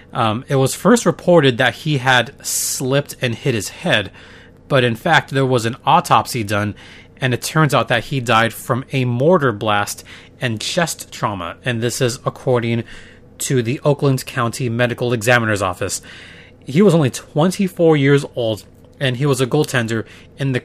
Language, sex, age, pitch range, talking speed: English, male, 30-49, 115-140 Hz, 170 wpm